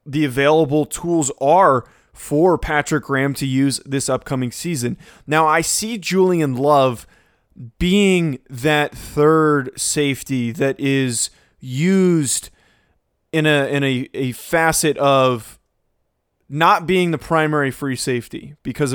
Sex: male